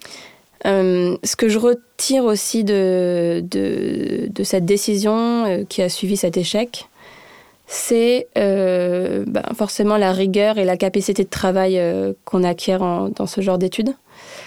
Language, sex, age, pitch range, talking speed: French, female, 20-39, 185-215 Hz, 145 wpm